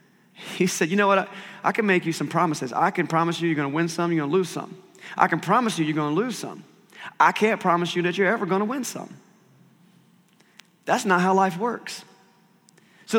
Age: 30-49